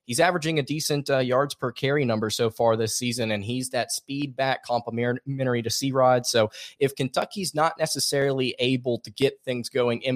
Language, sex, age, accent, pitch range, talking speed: English, male, 20-39, American, 115-135 Hz, 190 wpm